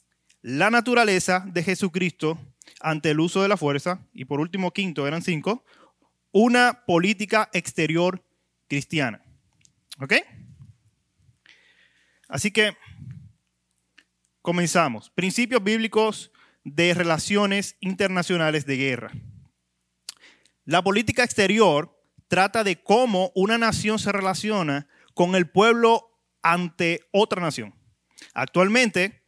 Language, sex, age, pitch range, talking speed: Spanish, male, 30-49, 150-205 Hz, 100 wpm